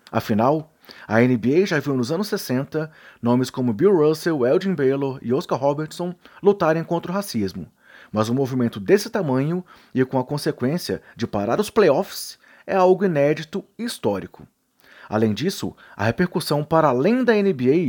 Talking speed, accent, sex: 160 wpm, Brazilian, male